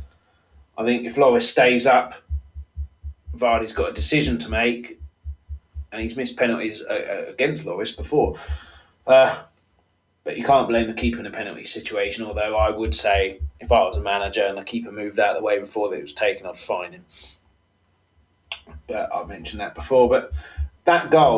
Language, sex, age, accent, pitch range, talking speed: English, male, 20-39, British, 80-130 Hz, 175 wpm